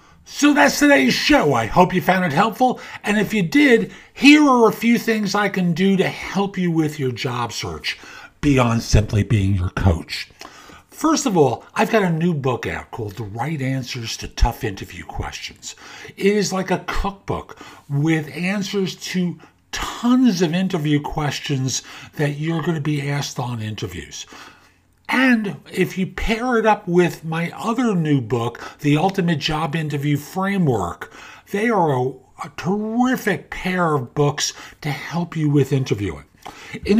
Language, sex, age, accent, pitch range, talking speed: English, male, 50-69, American, 140-200 Hz, 165 wpm